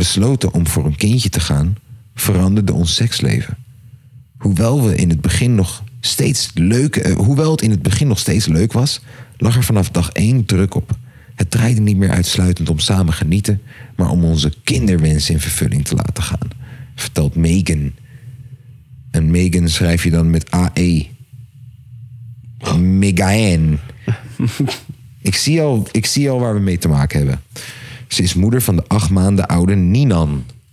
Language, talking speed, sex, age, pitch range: Dutch, 160 wpm, male, 40-59, 90-125 Hz